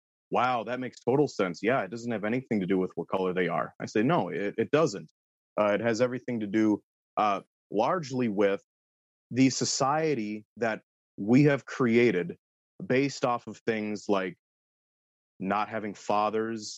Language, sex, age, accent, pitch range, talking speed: English, male, 30-49, American, 105-125 Hz, 165 wpm